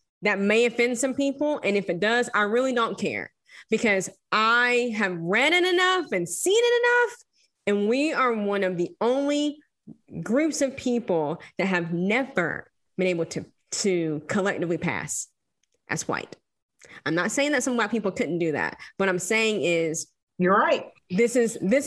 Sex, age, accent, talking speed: female, 20-39, American, 175 wpm